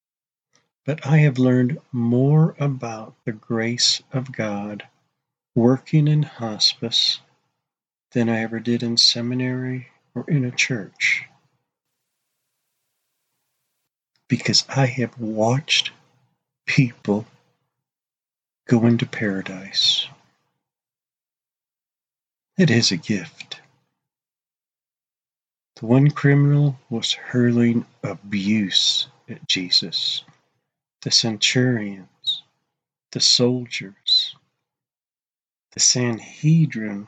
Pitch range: 115-135 Hz